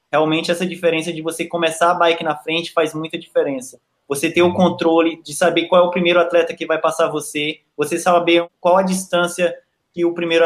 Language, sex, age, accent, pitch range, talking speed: Portuguese, male, 20-39, Brazilian, 155-175 Hz, 205 wpm